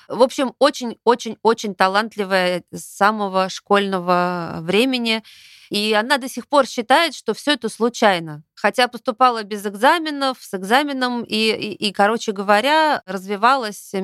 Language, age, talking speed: Russian, 30-49, 130 wpm